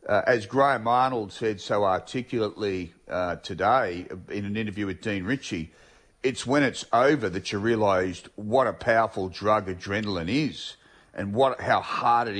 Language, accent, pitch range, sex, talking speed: English, Australian, 105-135 Hz, male, 160 wpm